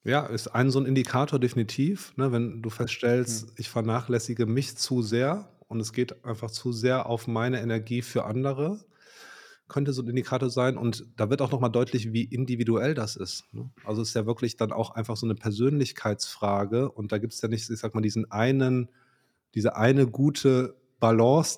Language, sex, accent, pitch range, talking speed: German, male, German, 110-130 Hz, 190 wpm